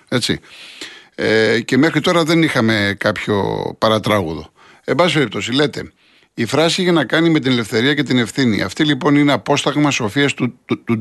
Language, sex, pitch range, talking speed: Greek, male, 115-145 Hz, 175 wpm